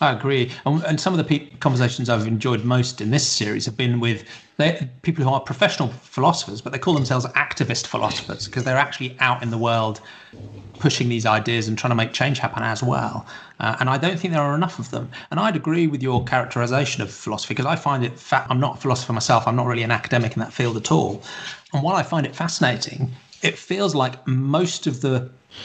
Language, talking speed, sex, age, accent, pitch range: English, 220 wpm, male, 30-49, British, 120-150 Hz